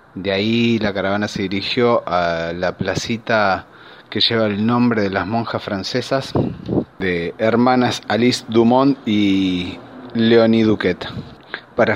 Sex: male